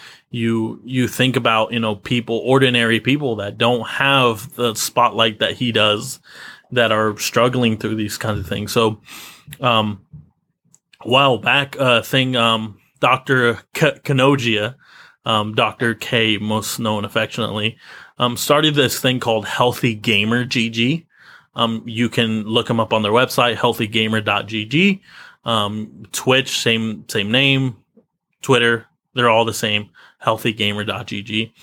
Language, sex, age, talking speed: English, male, 30-49, 135 wpm